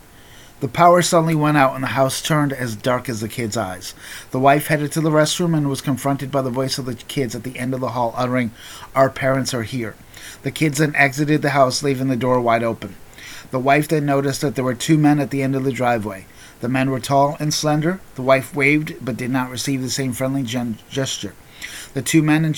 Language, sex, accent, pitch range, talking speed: English, male, American, 125-145 Hz, 235 wpm